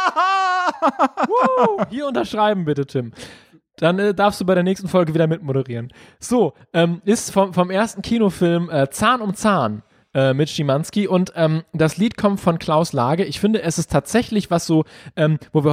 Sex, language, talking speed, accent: male, German, 175 wpm, German